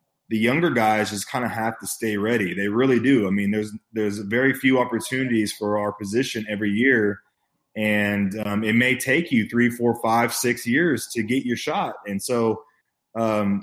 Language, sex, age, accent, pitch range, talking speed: English, male, 20-39, American, 105-120 Hz, 190 wpm